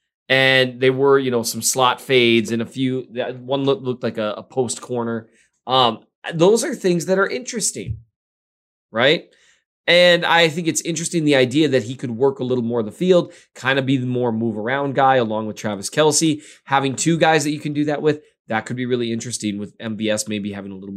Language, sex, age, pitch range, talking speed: English, male, 20-39, 115-150 Hz, 215 wpm